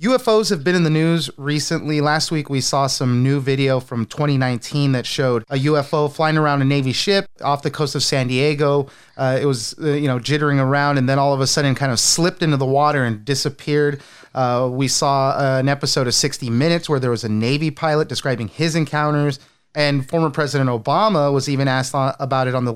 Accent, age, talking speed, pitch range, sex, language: American, 30-49, 215 wpm, 135-160 Hz, male, English